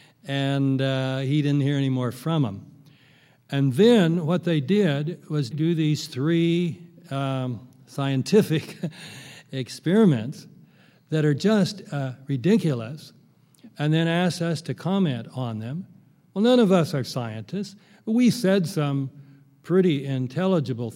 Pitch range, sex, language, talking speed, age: 135-175 Hz, male, English, 130 wpm, 60-79